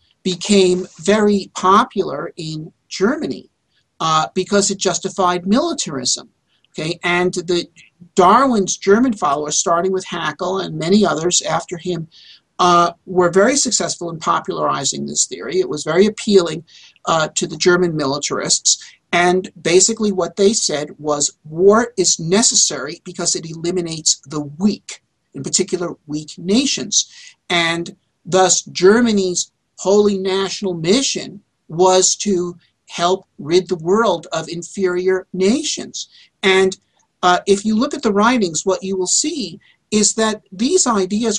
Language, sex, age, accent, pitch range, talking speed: English, male, 50-69, American, 175-205 Hz, 130 wpm